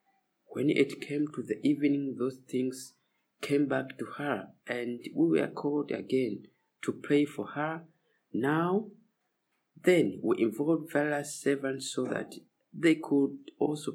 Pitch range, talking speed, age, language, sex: 130-180 Hz, 140 wpm, 50-69, English, male